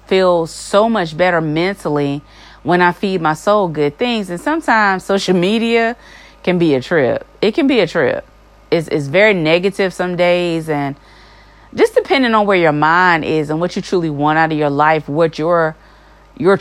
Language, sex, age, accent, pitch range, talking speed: English, female, 30-49, American, 155-200 Hz, 185 wpm